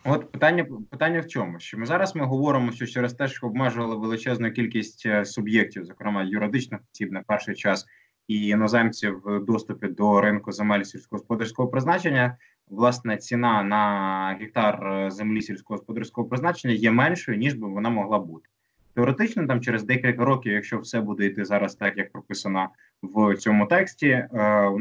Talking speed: 155 wpm